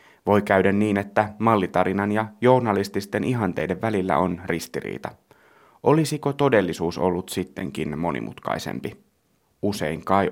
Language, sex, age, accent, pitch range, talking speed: Finnish, male, 30-49, native, 95-115 Hz, 105 wpm